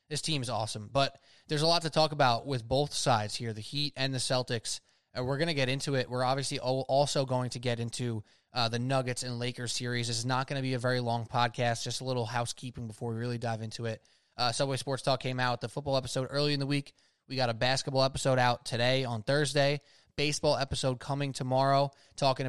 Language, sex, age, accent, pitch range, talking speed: English, male, 20-39, American, 120-135 Hz, 230 wpm